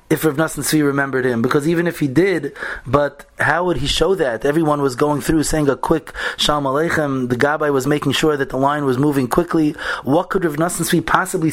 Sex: male